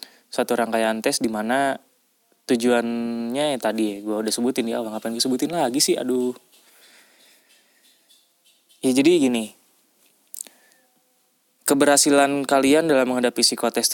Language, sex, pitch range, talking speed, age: Indonesian, male, 120-150 Hz, 120 wpm, 20-39